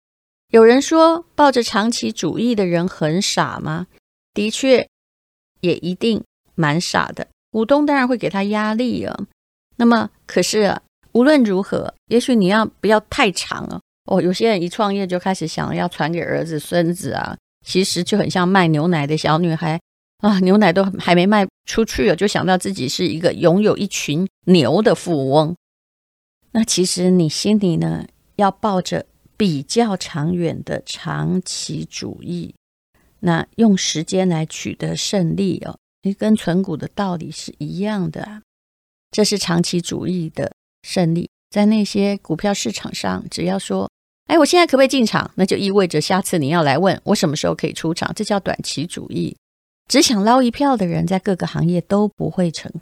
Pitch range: 170-215 Hz